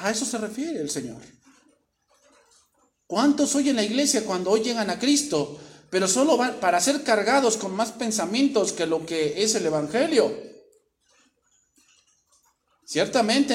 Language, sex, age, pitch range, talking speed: English, male, 50-69, 160-225 Hz, 135 wpm